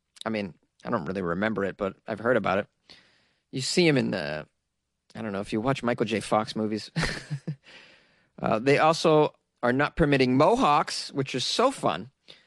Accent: American